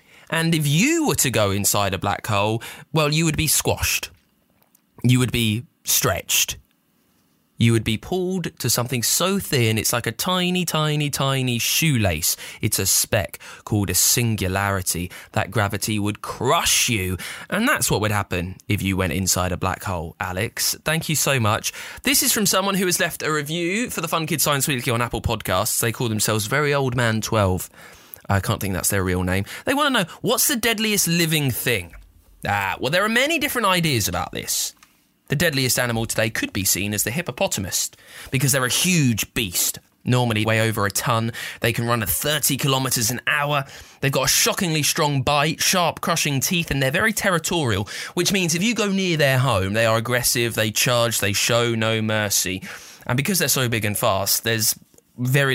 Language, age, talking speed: English, 20-39, 195 wpm